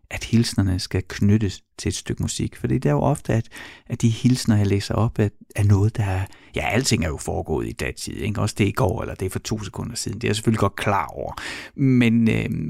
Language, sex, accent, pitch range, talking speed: Danish, male, native, 100-120 Hz, 250 wpm